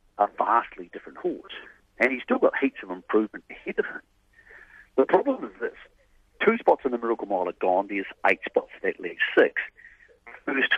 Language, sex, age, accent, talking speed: English, male, 50-69, British, 185 wpm